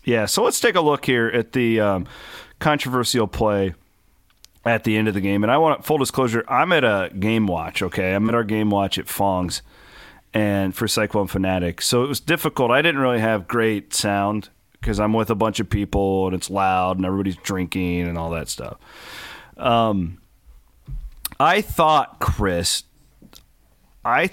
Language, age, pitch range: English, 40-59, 100-125 Hz